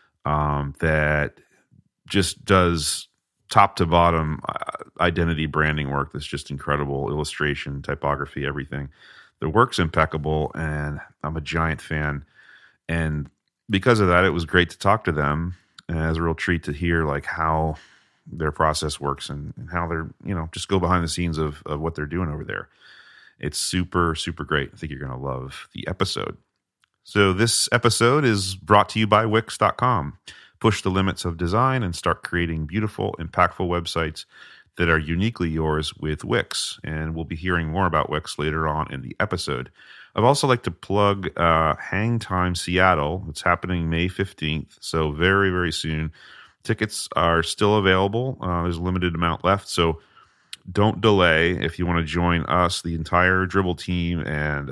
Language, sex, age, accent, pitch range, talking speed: English, male, 30-49, American, 75-95 Hz, 170 wpm